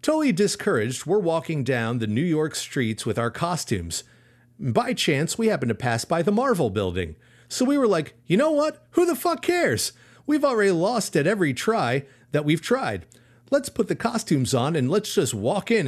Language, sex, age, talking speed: English, male, 40-59, 195 wpm